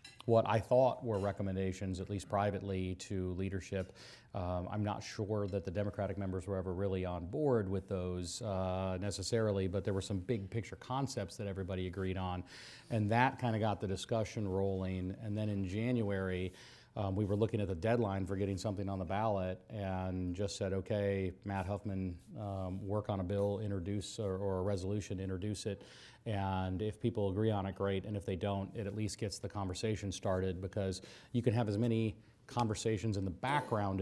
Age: 40-59